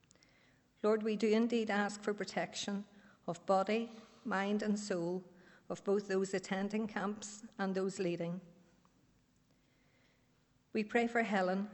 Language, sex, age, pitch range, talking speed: English, female, 50-69, 180-210 Hz, 125 wpm